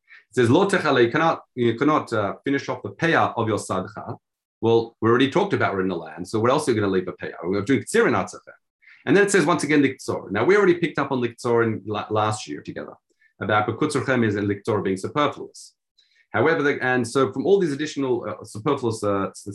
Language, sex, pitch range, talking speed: English, male, 110-135 Hz, 215 wpm